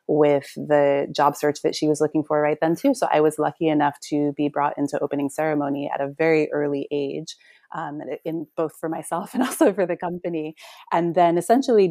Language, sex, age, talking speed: English, female, 30-49, 210 wpm